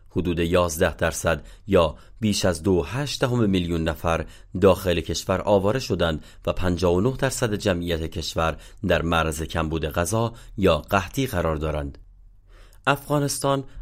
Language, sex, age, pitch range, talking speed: Persian, male, 30-49, 85-105 Hz, 130 wpm